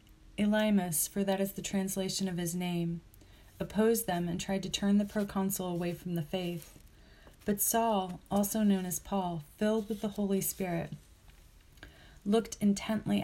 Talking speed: 155 wpm